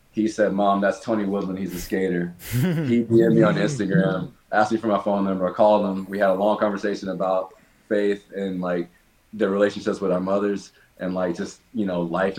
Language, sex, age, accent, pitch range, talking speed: English, male, 20-39, American, 90-105 Hz, 210 wpm